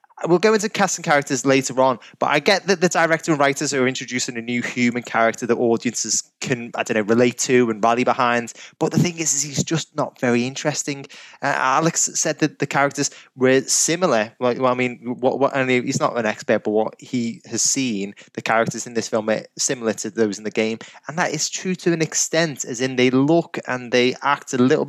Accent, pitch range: British, 115-140 Hz